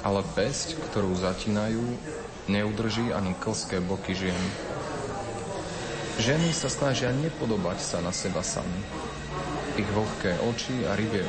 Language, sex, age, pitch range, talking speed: Slovak, male, 30-49, 95-115 Hz, 115 wpm